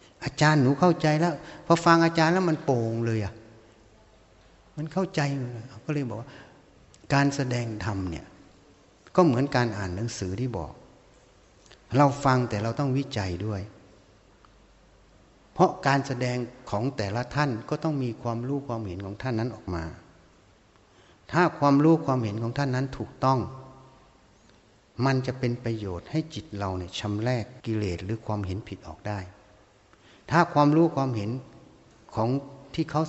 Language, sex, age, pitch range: Thai, male, 60-79, 100-130 Hz